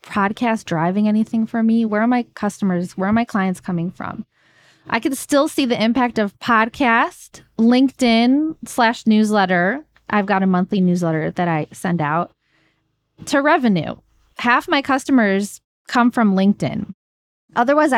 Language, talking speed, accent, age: English, 145 wpm, American, 20-39